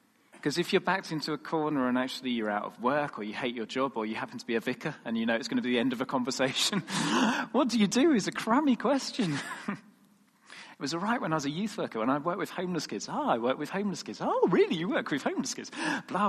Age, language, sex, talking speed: 40-59, English, male, 275 wpm